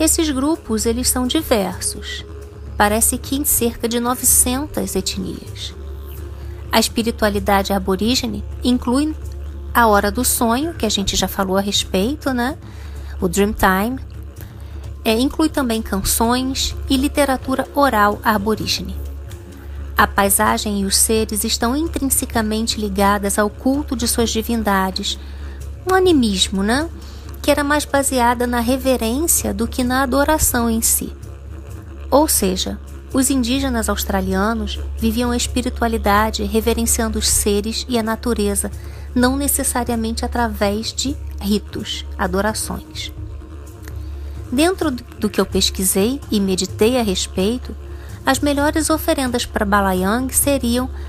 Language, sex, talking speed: English, female, 115 wpm